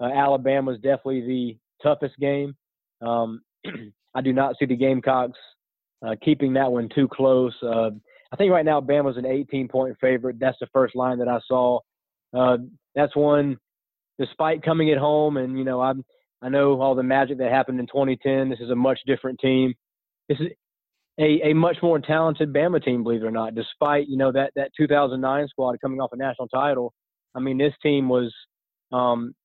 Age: 20-39